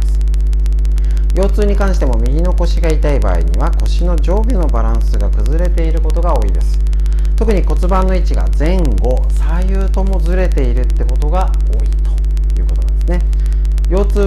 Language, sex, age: Japanese, male, 40-59